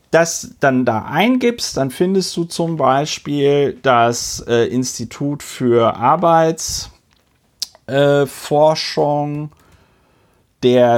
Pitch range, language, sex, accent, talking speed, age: 130-170 Hz, German, male, German, 90 wpm, 40-59